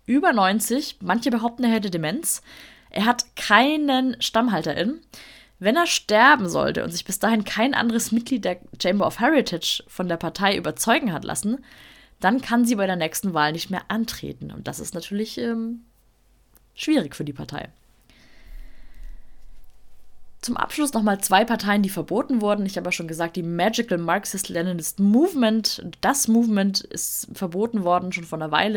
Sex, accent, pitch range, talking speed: female, German, 175-235 Hz, 160 wpm